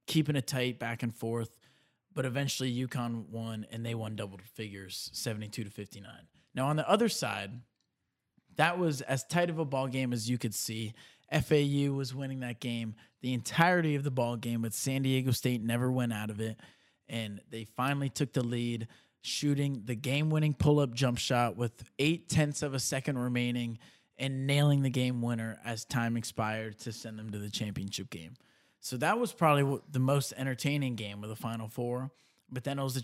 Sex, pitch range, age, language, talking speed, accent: male, 115-145 Hz, 20-39, English, 195 wpm, American